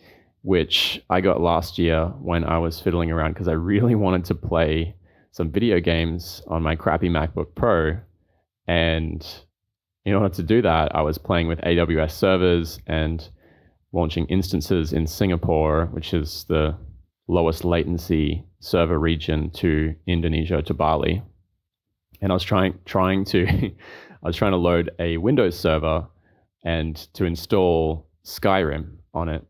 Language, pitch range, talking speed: English, 80-90 Hz, 145 wpm